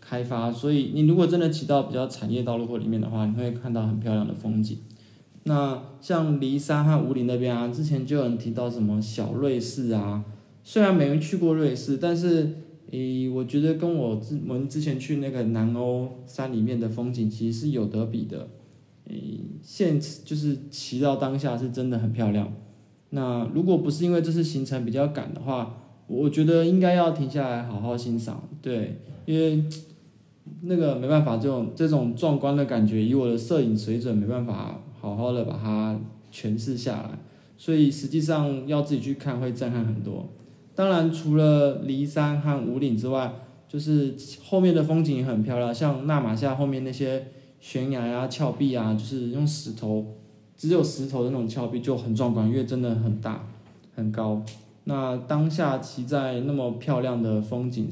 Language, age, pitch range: Chinese, 20-39, 115-150 Hz